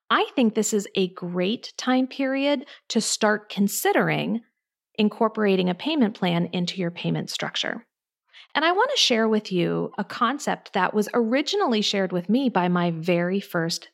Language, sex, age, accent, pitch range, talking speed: English, female, 40-59, American, 185-265 Hz, 165 wpm